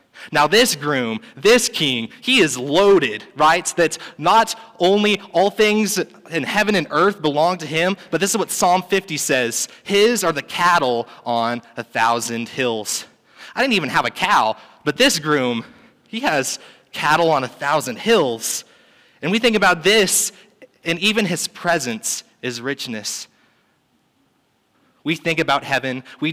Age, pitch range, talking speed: 20-39, 130-185 Hz, 155 wpm